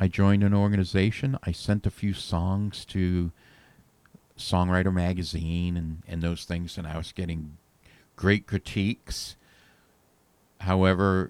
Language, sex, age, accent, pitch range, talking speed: English, male, 50-69, American, 85-100 Hz, 120 wpm